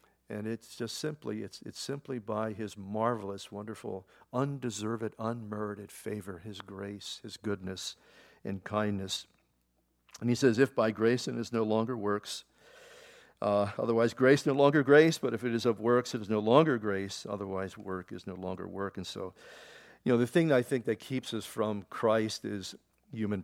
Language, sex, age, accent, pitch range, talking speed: English, male, 50-69, American, 105-140 Hz, 180 wpm